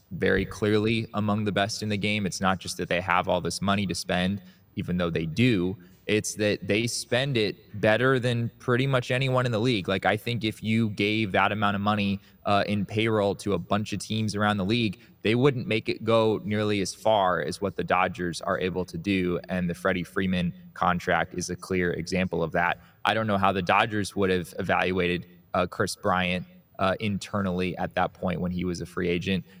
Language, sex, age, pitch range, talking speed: English, male, 20-39, 90-105 Hz, 215 wpm